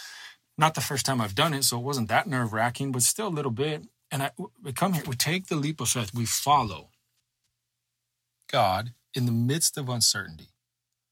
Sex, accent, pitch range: male, American, 100-125 Hz